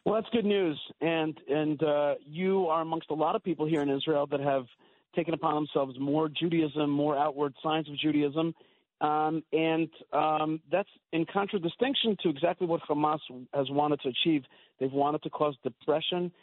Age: 40-59